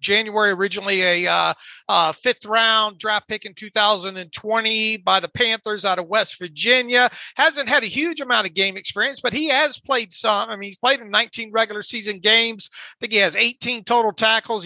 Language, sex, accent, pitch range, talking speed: English, male, American, 200-235 Hz, 190 wpm